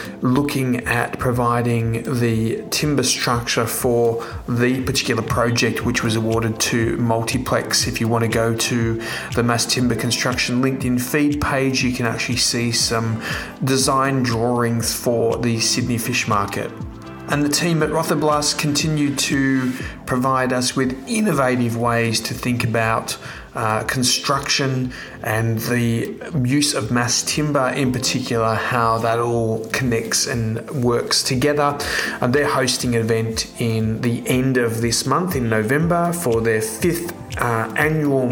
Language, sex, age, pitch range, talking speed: English, male, 30-49, 115-135 Hz, 140 wpm